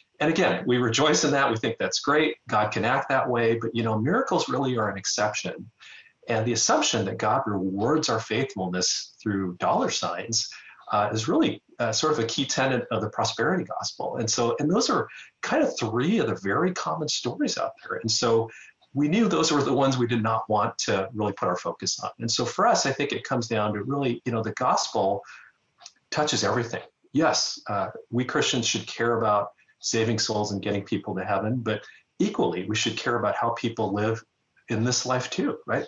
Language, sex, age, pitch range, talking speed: English, male, 40-59, 110-135 Hz, 210 wpm